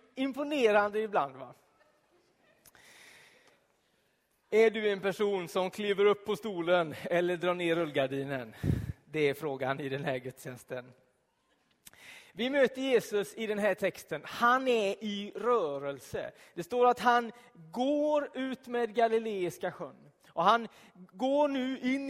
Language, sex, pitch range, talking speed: Swedish, male, 165-245 Hz, 130 wpm